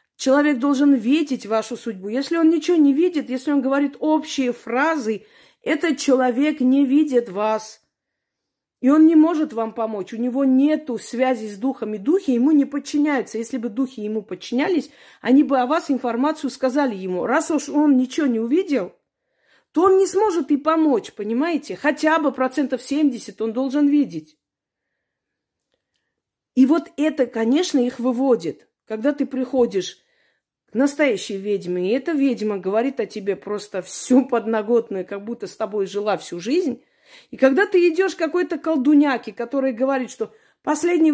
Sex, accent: female, native